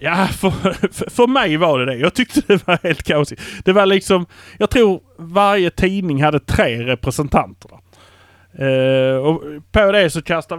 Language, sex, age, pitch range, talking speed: Swedish, male, 30-49, 130-175 Hz, 165 wpm